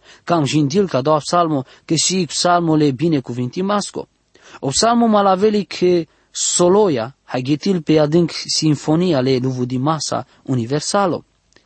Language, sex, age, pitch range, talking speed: English, male, 20-39, 145-190 Hz, 130 wpm